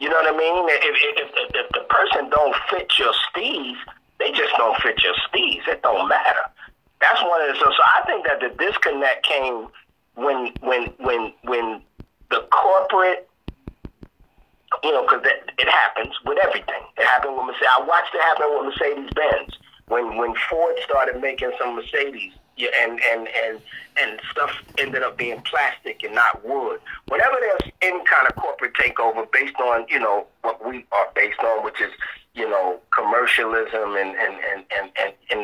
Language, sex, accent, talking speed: English, male, American, 180 wpm